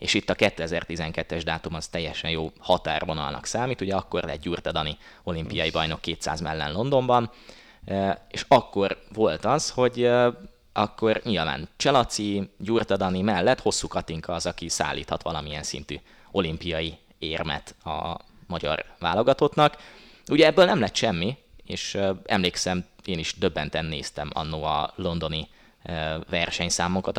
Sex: male